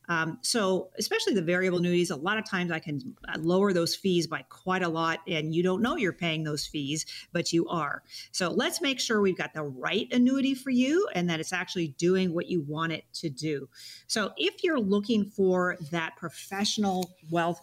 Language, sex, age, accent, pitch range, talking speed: English, female, 40-59, American, 160-215 Hz, 205 wpm